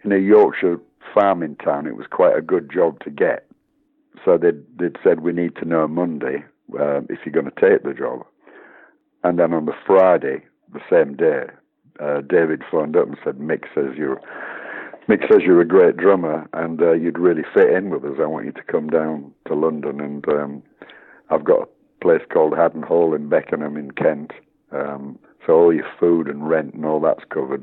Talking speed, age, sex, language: 200 wpm, 60-79, male, English